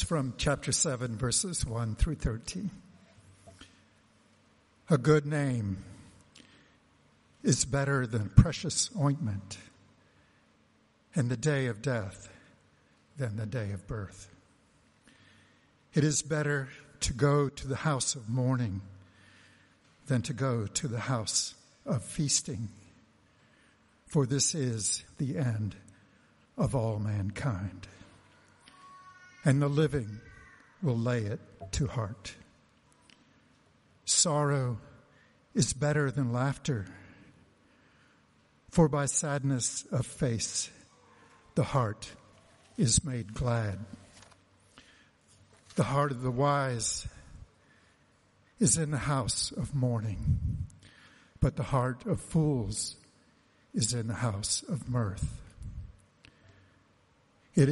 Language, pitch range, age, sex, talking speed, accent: English, 100-140 Hz, 60-79, male, 100 wpm, American